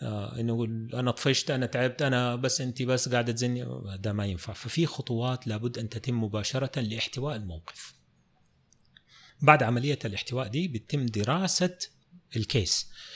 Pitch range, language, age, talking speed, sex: 100-130 Hz, Arabic, 30-49, 130 wpm, male